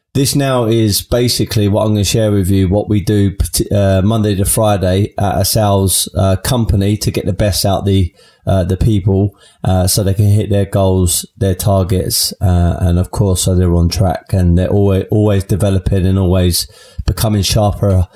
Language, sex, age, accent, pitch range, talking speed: English, male, 20-39, British, 95-115 Hz, 195 wpm